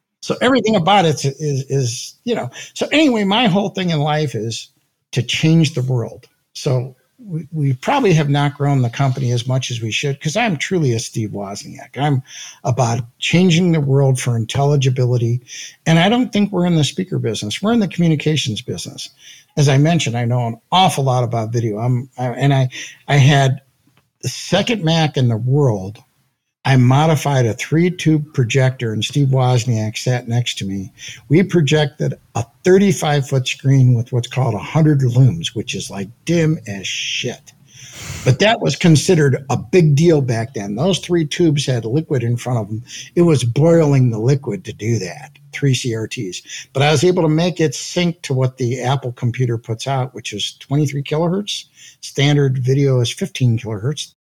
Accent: American